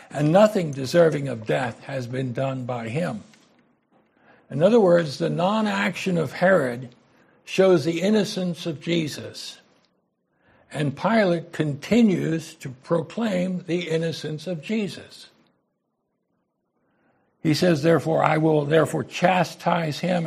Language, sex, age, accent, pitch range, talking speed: English, male, 60-79, American, 145-185 Hz, 115 wpm